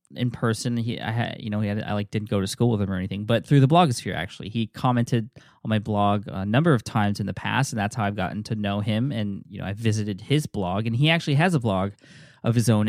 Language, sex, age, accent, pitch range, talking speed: English, male, 20-39, American, 105-130 Hz, 280 wpm